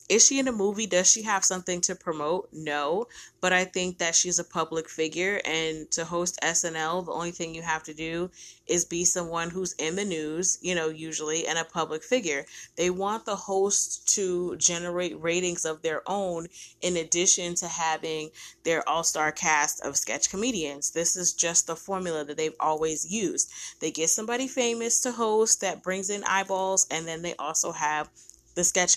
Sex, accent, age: female, American, 20-39